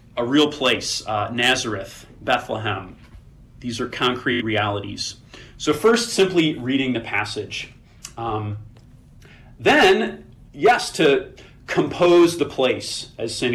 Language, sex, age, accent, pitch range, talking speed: English, male, 30-49, American, 115-145 Hz, 110 wpm